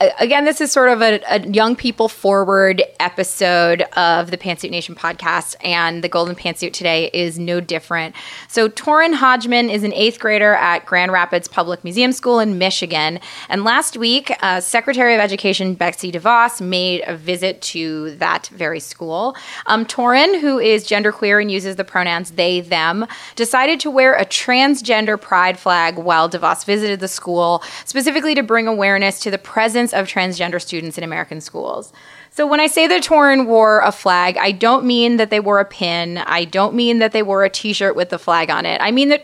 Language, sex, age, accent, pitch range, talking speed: English, female, 20-39, American, 180-235 Hz, 190 wpm